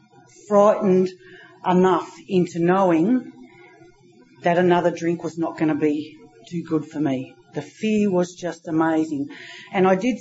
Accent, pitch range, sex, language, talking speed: Australian, 170-205 Hz, female, English, 140 wpm